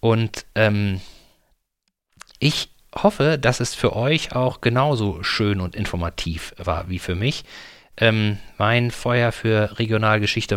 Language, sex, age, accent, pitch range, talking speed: German, male, 40-59, German, 100-130 Hz, 125 wpm